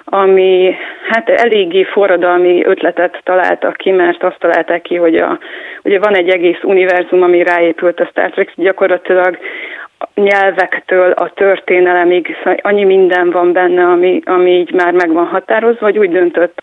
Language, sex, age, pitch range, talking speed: Hungarian, female, 30-49, 175-205 Hz, 150 wpm